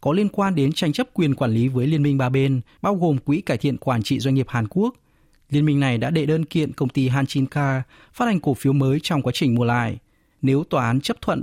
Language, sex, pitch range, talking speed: Vietnamese, male, 120-155 Hz, 270 wpm